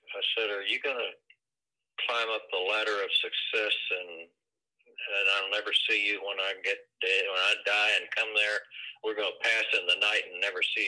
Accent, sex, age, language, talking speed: American, male, 50-69, English, 210 wpm